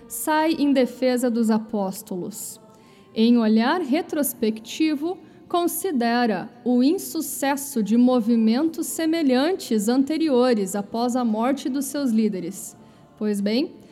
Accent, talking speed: Brazilian, 100 wpm